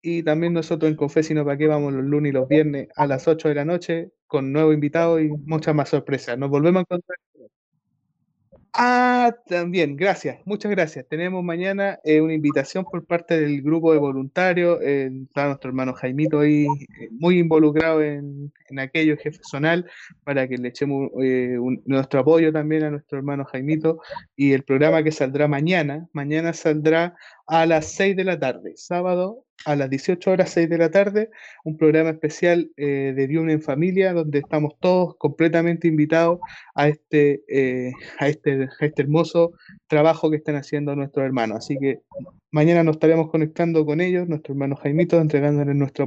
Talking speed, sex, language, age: 170 wpm, male, Spanish, 20-39